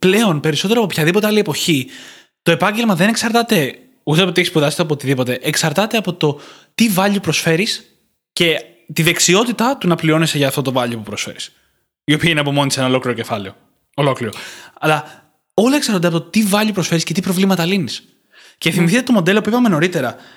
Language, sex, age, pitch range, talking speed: Greek, male, 20-39, 145-205 Hz, 190 wpm